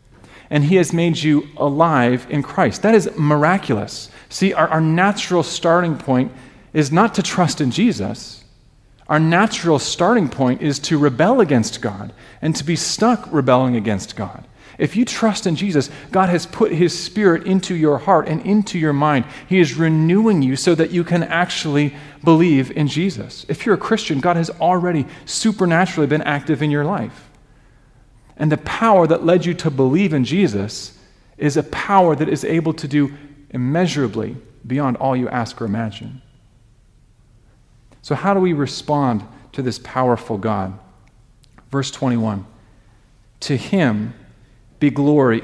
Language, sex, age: English, male, 40-59